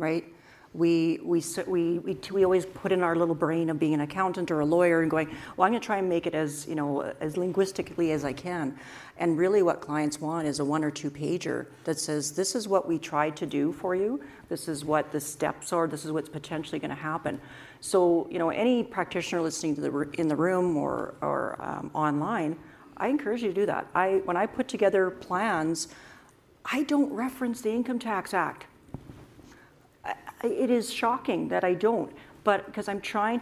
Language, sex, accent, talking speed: English, female, American, 205 wpm